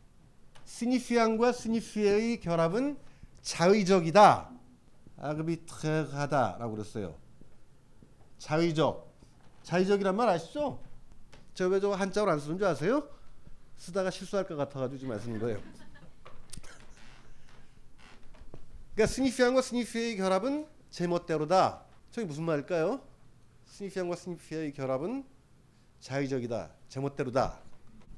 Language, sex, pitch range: Korean, male, 135-205 Hz